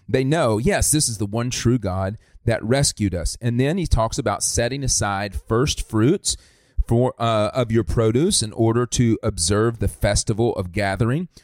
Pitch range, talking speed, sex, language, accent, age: 105-125 Hz, 180 wpm, male, English, American, 30-49